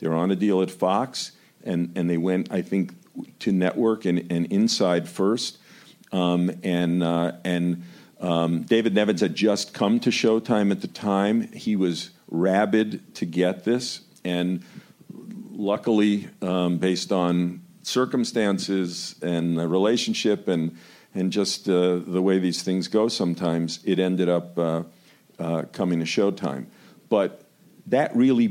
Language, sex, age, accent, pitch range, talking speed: English, male, 50-69, American, 85-110 Hz, 145 wpm